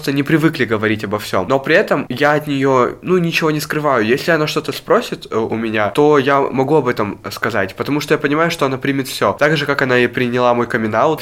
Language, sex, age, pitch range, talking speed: Russian, male, 20-39, 120-150 Hz, 235 wpm